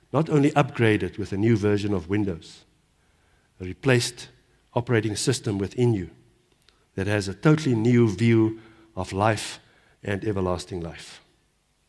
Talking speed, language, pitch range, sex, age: 130 wpm, English, 100-145 Hz, male, 60-79